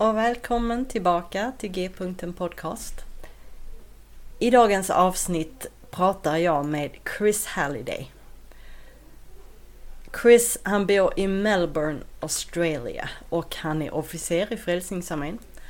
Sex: female